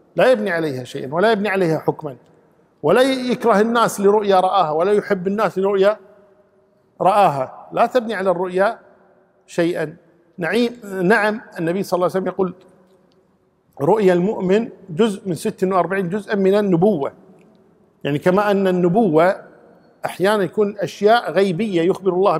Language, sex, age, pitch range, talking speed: Arabic, male, 50-69, 170-200 Hz, 130 wpm